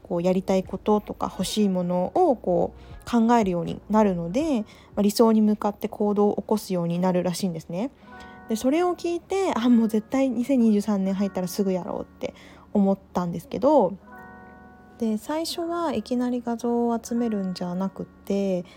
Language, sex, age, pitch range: Japanese, female, 20-39, 180-235 Hz